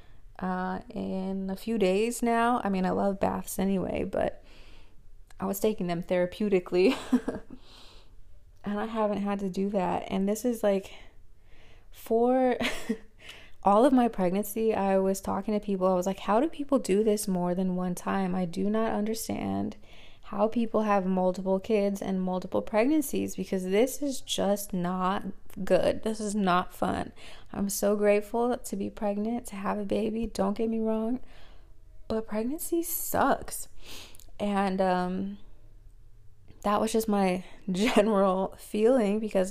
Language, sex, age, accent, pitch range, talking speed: English, female, 20-39, American, 185-220 Hz, 150 wpm